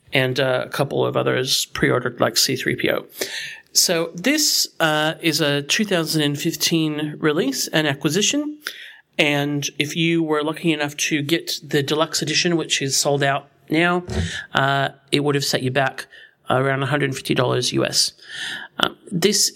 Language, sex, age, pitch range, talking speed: English, male, 40-59, 135-165 Hz, 140 wpm